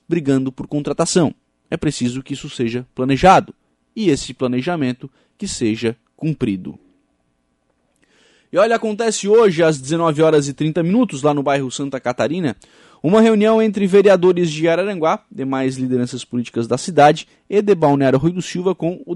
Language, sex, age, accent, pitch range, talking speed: Portuguese, male, 20-39, Brazilian, 135-195 Hz, 155 wpm